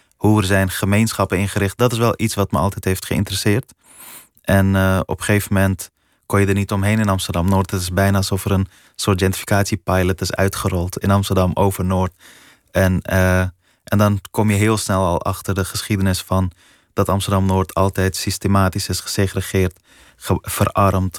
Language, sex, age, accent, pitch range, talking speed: Dutch, male, 20-39, Dutch, 95-100 Hz, 170 wpm